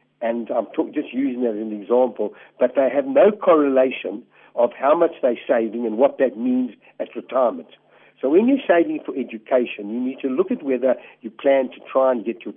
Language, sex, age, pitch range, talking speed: English, male, 60-79, 115-150 Hz, 210 wpm